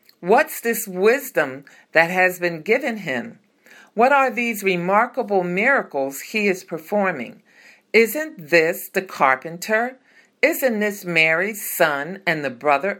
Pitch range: 155-225 Hz